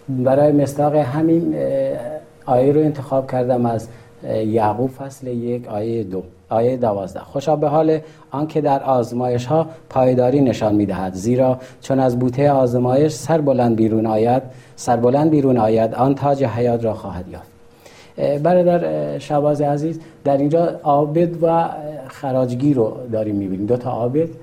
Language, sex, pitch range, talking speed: Persian, male, 115-140 Hz, 145 wpm